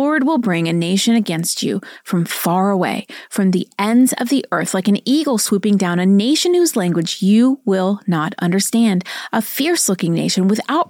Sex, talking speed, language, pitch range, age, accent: female, 180 wpm, English, 185-255 Hz, 30-49, American